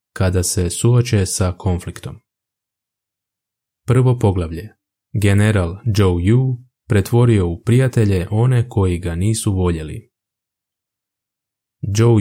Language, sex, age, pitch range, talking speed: Croatian, male, 20-39, 95-115 Hz, 95 wpm